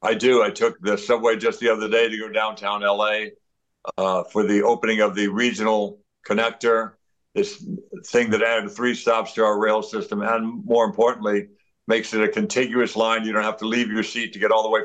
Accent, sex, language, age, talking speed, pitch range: American, male, English, 60-79, 210 wpm, 105-115 Hz